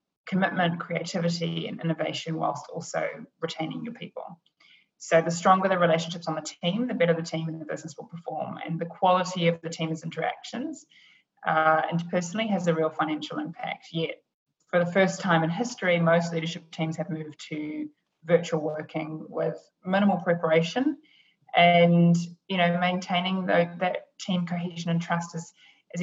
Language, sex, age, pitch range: English, female, 20-39, 165-185 Hz